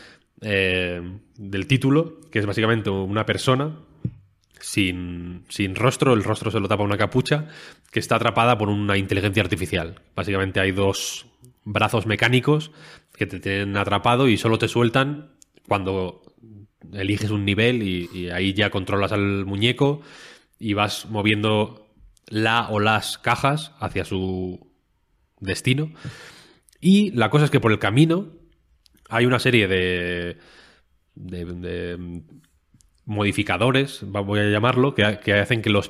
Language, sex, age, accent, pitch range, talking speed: Spanish, male, 20-39, Spanish, 100-125 Hz, 135 wpm